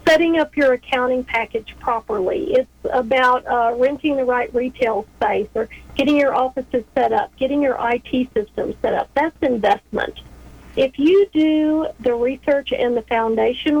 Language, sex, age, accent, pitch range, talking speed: English, female, 50-69, American, 240-285 Hz, 155 wpm